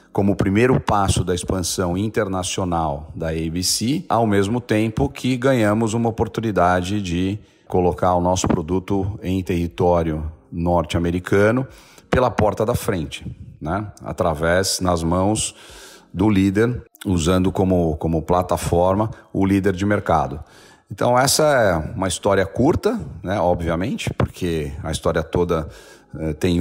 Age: 40-59